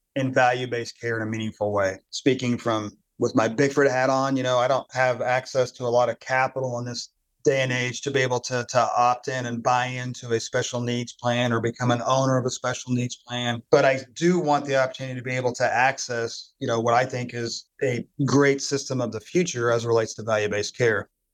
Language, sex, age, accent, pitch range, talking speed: English, male, 40-59, American, 120-135 Hz, 230 wpm